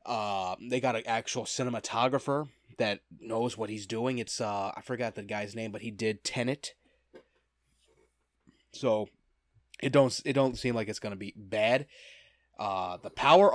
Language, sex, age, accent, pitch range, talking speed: English, male, 30-49, American, 105-140 Hz, 160 wpm